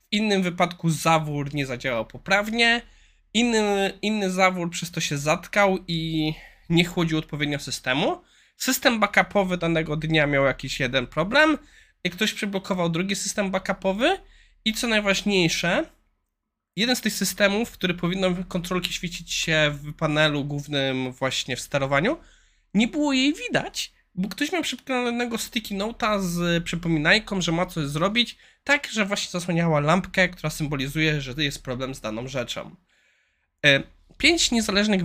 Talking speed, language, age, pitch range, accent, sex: 140 wpm, Polish, 20-39, 155-215 Hz, native, male